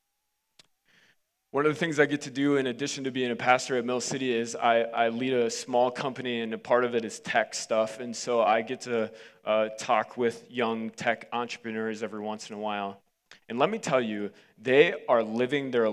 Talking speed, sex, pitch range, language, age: 215 wpm, male, 115-140 Hz, English, 20-39